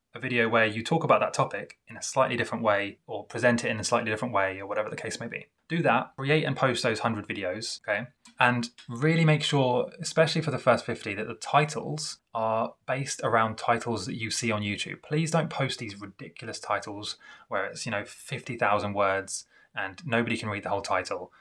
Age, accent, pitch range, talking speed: 20-39, British, 105-135 Hz, 215 wpm